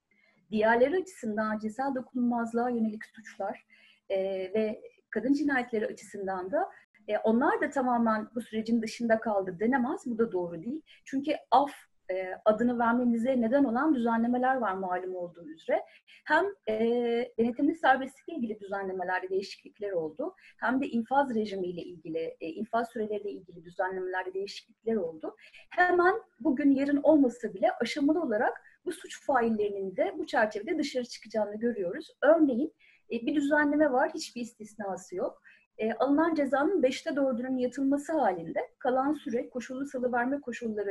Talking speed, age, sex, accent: 135 wpm, 30-49, female, native